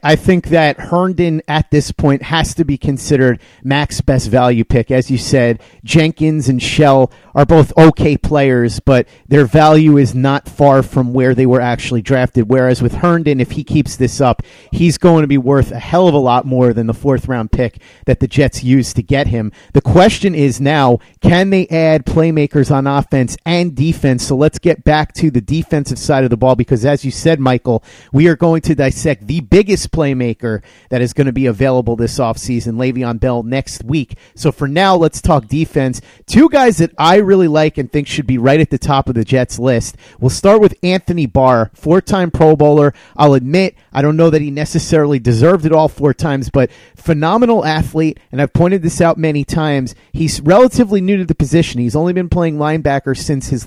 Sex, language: male, English